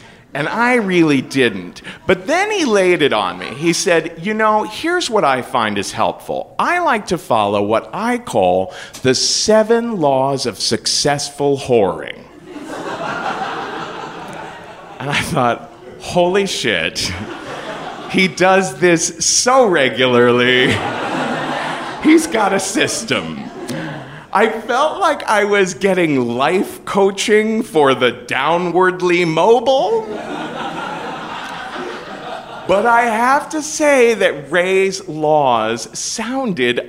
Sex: male